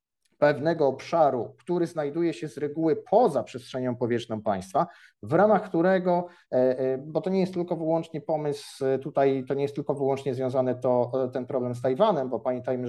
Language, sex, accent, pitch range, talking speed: Polish, male, native, 120-160 Hz, 165 wpm